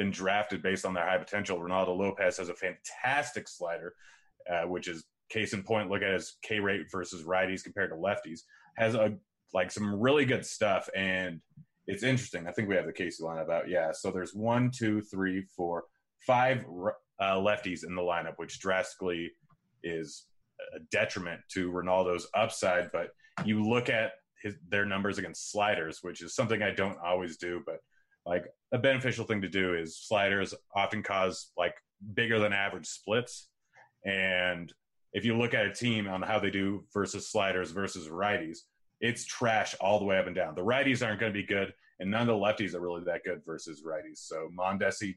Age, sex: 30-49, male